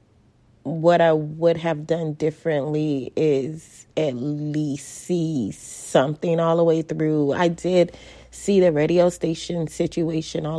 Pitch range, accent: 140-165 Hz, American